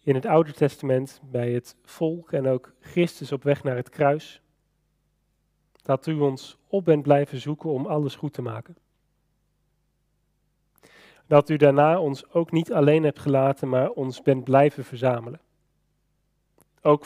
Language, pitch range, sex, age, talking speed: Dutch, 135-155 Hz, male, 40-59, 150 wpm